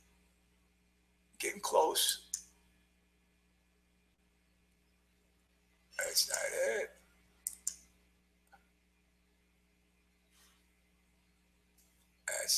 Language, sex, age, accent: English, male, 60-79, American